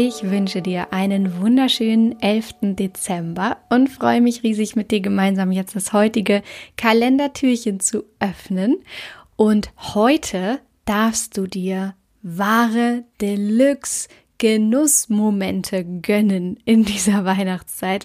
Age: 10-29